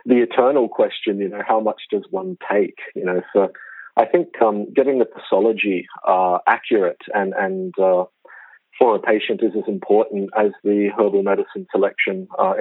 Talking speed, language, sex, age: 170 wpm, English, male, 40-59